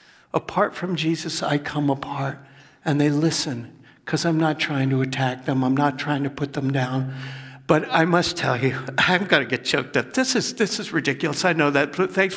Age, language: 60-79, English